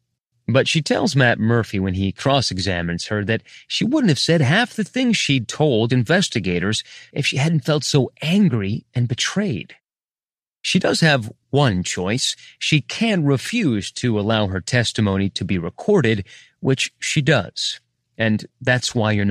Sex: male